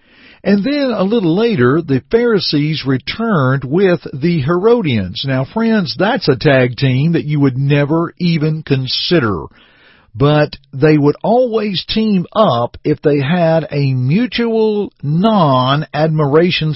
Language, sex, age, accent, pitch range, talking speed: English, male, 50-69, American, 130-185 Hz, 125 wpm